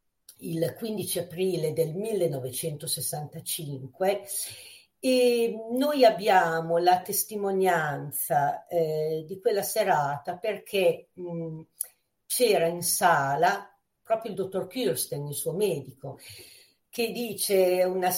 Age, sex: 50-69, female